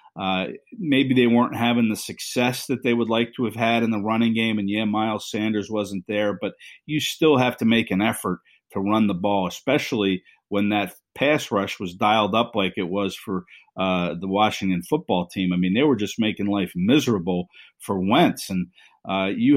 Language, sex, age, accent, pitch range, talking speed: English, male, 50-69, American, 100-125 Hz, 200 wpm